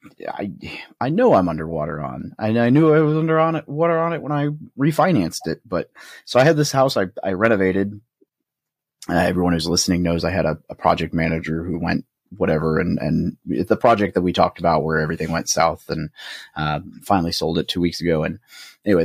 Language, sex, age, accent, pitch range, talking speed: English, male, 30-49, American, 85-110 Hz, 210 wpm